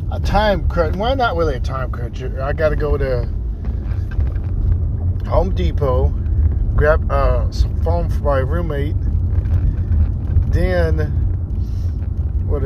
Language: English